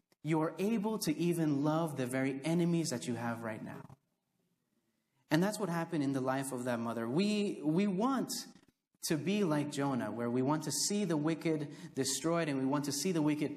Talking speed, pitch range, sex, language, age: 200 wpm, 140-180 Hz, male, English, 30-49